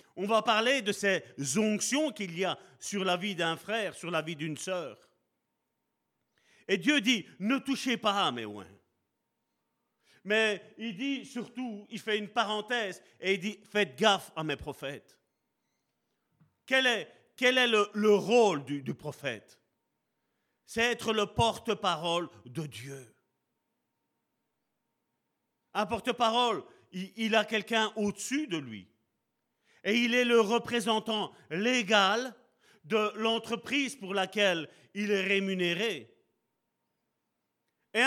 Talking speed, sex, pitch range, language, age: 130 wpm, male, 180-235 Hz, French, 40-59